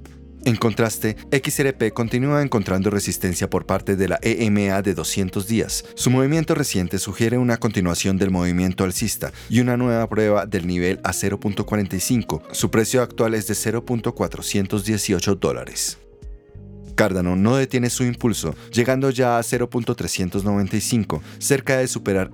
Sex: male